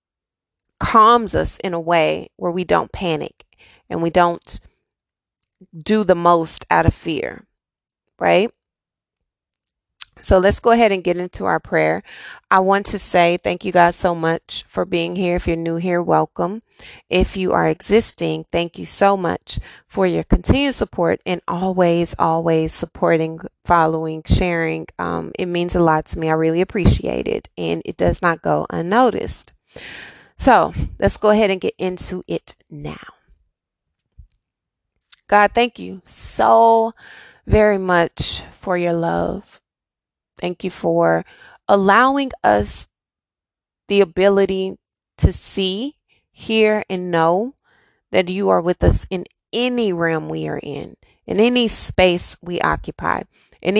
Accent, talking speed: American, 140 wpm